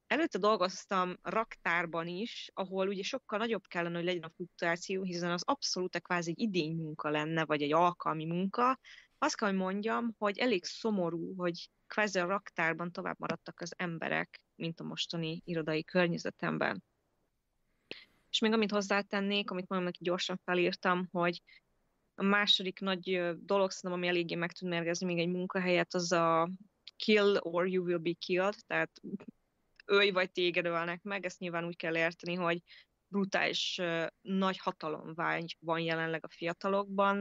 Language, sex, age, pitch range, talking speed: Hungarian, female, 20-39, 170-195 Hz, 150 wpm